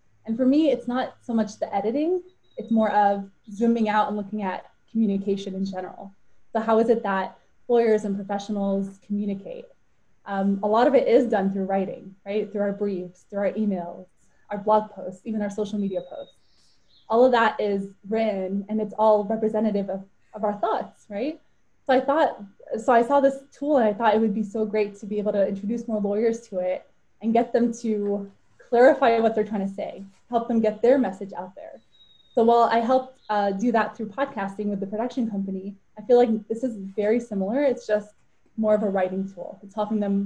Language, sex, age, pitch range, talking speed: English, female, 20-39, 195-230 Hz, 205 wpm